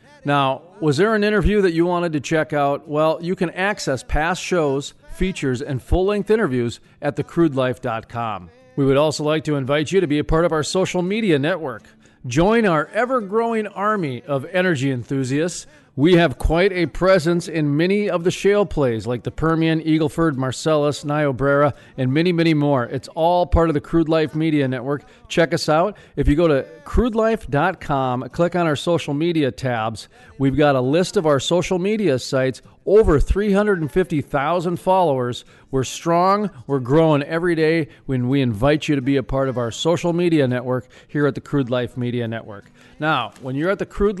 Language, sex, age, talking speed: English, male, 40-59, 180 wpm